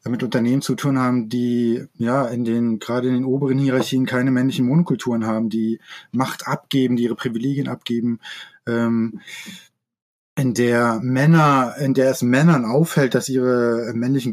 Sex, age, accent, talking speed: male, 20-39, German, 155 wpm